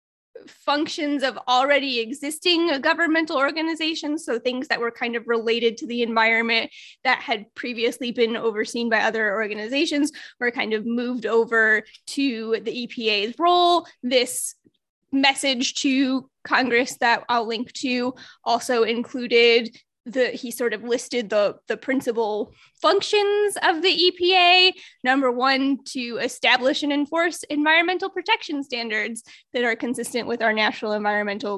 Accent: American